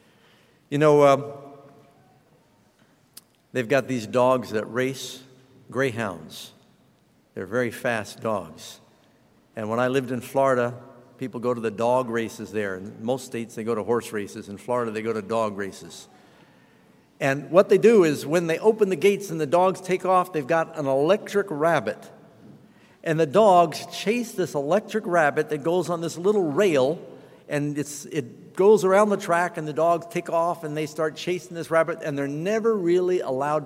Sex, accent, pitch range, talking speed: male, American, 120-155 Hz, 175 wpm